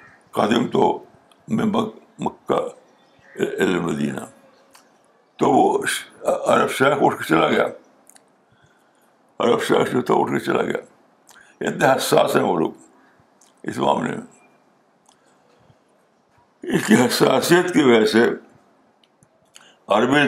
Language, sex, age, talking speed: Urdu, male, 60-79, 90 wpm